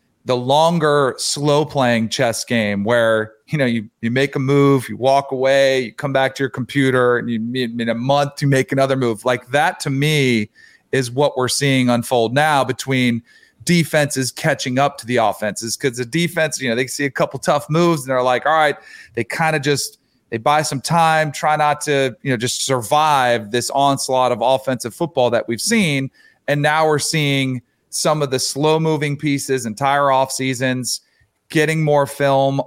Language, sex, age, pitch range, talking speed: English, male, 40-59, 125-150 Hz, 185 wpm